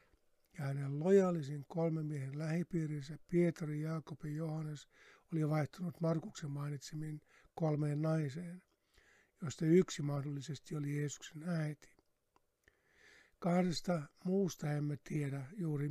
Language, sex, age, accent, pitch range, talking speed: Finnish, male, 60-79, native, 145-165 Hz, 100 wpm